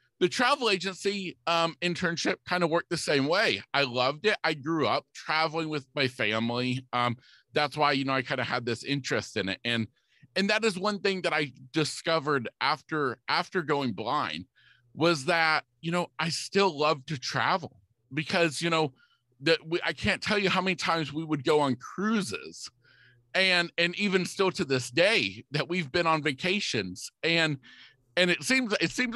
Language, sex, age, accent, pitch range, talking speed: English, male, 40-59, American, 130-185 Hz, 190 wpm